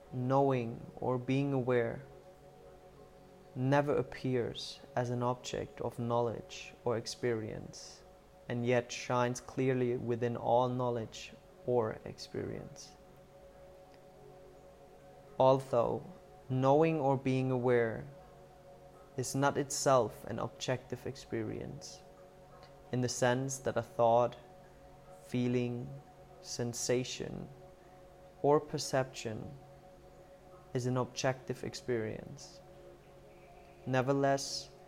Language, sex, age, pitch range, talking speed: English, male, 20-39, 120-140 Hz, 85 wpm